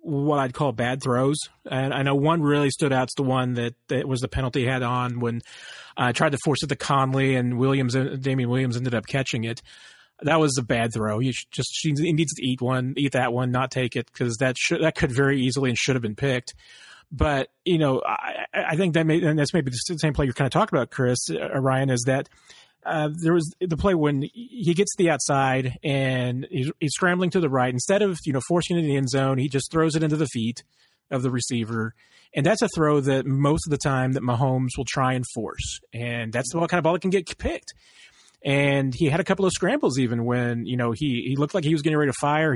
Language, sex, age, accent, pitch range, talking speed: English, male, 30-49, American, 125-155 Hz, 245 wpm